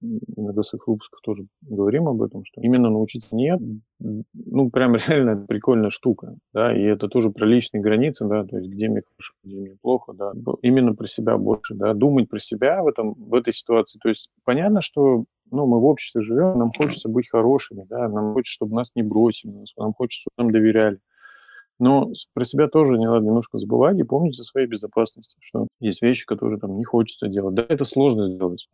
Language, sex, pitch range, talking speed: Russian, male, 110-130 Hz, 200 wpm